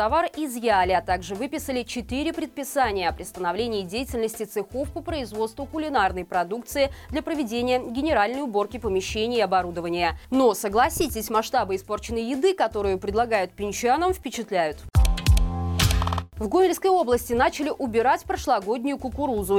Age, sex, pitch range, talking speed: 20-39, female, 205-285 Hz, 115 wpm